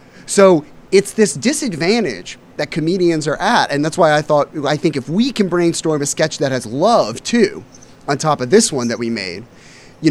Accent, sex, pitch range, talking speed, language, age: American, male, 145-215 Hz, 200 wpm, English, 30-49